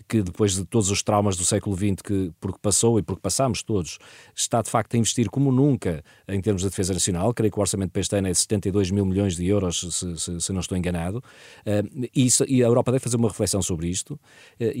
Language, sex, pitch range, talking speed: Portuguese, male, 100-130 Hz, 245 wpm